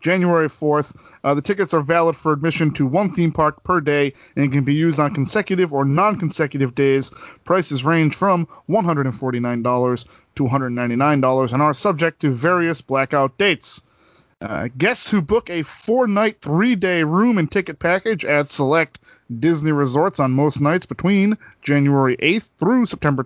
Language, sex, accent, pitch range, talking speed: English, male, American, 140-190 Hz, 155 wpm